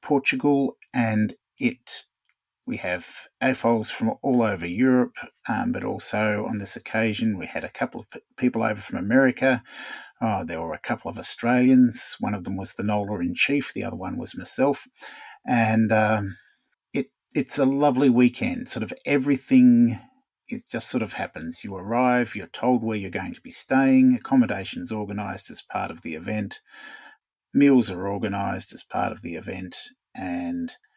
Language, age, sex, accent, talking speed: English, 50-69, male, Australian, 165 wpm